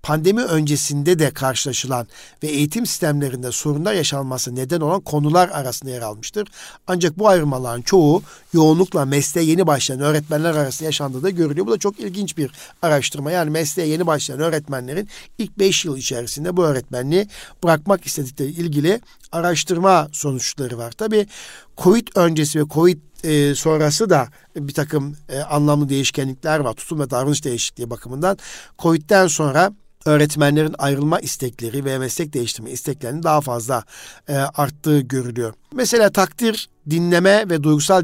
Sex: male